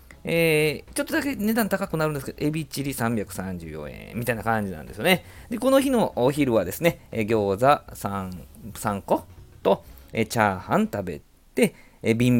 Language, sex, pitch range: Japanese, male, 95-140 Hz